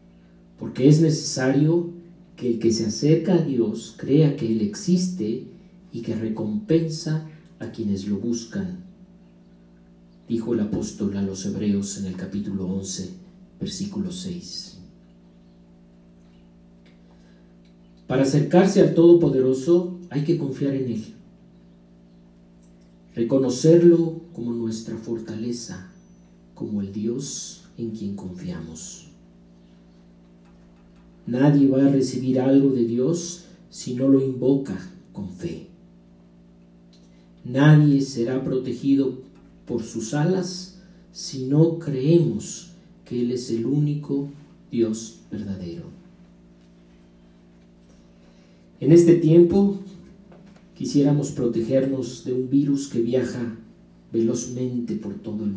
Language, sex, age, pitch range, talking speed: Spanish, male, 50-69, 125-185 Hz, 105 wpm